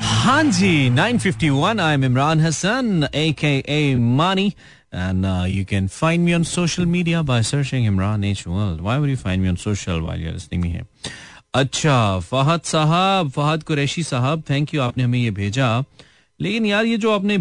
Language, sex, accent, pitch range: Hindi, male, native, 105-150 Hz